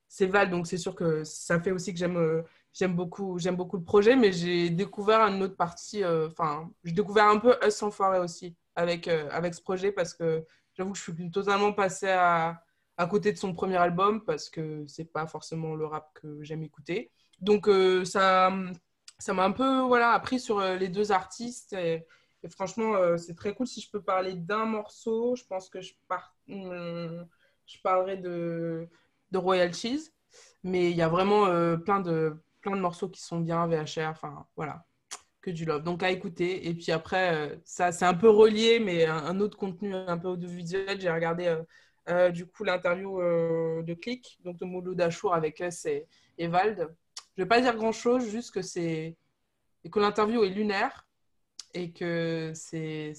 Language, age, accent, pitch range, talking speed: French, 20-39, French, 170-200 Hz, 195 wpm